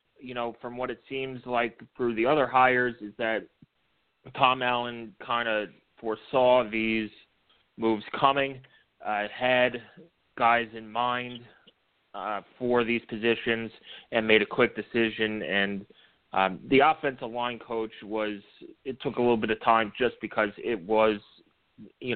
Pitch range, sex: 105-125 Hz, male